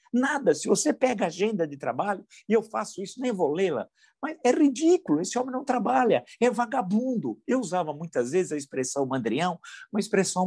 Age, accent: 50-69, Brazilian